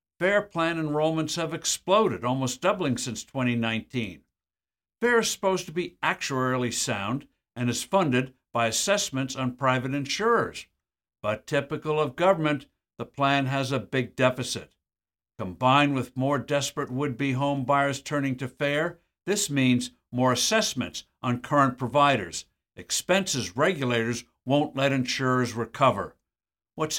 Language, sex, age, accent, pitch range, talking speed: English, male, 60-79, American, 125-155 Hz, 130 wpm